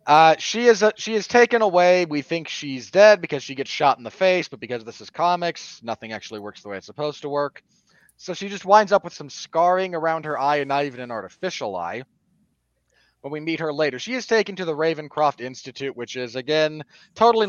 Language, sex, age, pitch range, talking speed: English, male, 30-49, 125-180 Hz, 225 wpm